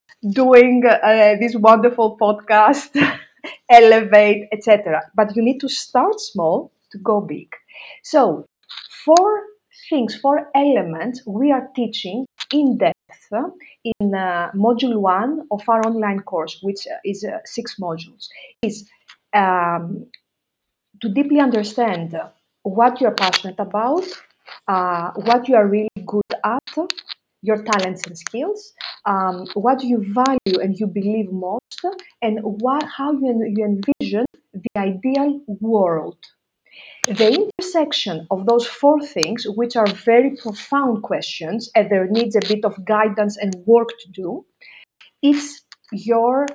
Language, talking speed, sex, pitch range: English, 130 wpm, female, 200-260 Hz